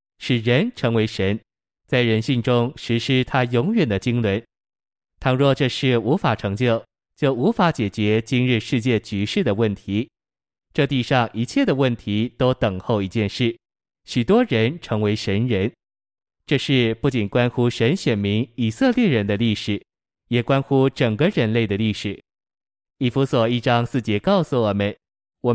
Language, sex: Chinese, male